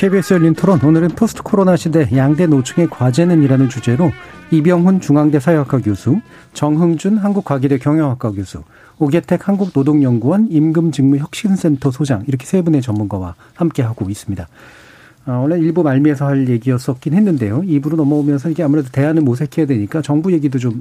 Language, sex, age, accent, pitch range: Korean, male, 40-59, native, 125-170 Hz